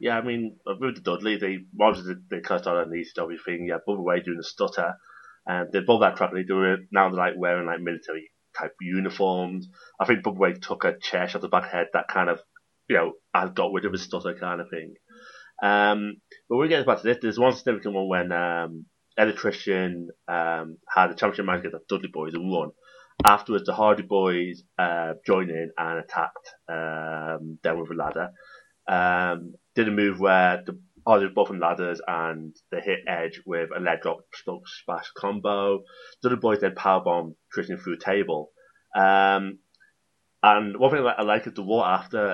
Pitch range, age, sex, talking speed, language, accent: 85-105 Hz, 30-49, male, 210 wpm, English, British